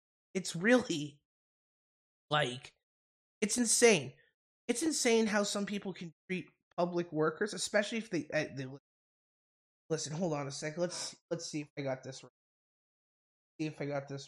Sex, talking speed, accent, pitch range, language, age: male, 160 wpm, American, 155-195 Hz, English, 20-39